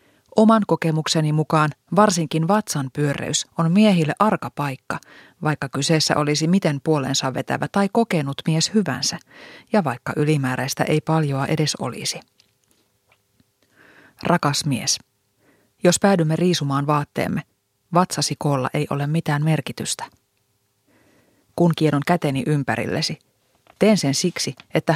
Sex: female